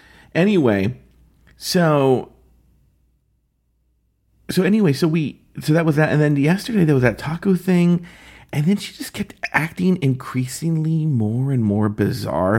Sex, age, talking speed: male, 40-59, 140 wpm